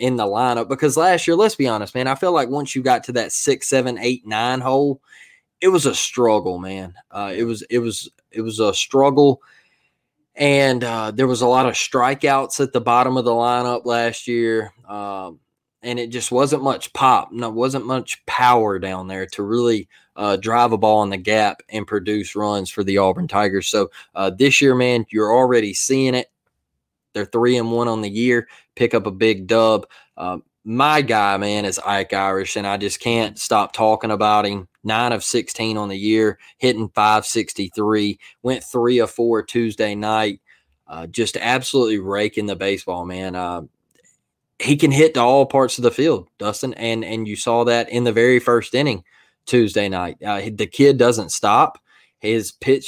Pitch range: 105-125 Hz